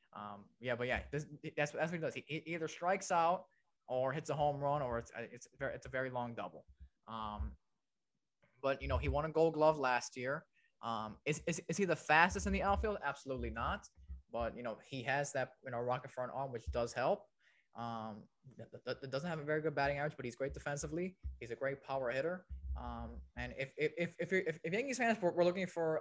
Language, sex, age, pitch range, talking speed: English, male, 20-39, 110-155 Hz, 225 wpm